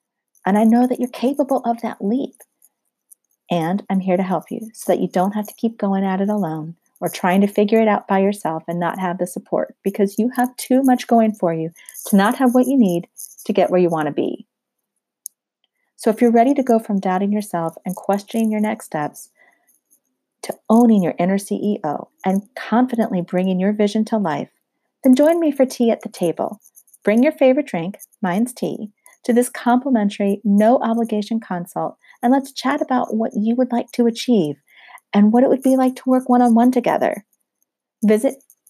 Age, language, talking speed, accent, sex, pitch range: 40-59, English, 195 wpm, American, female, 195-245 Hz